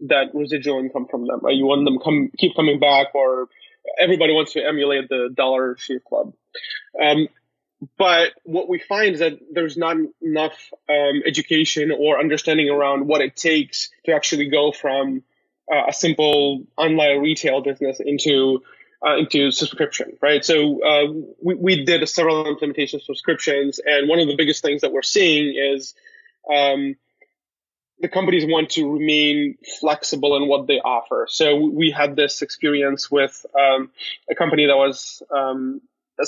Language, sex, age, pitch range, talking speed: English, male, 20-39, 140-165 Hz, 160 wpm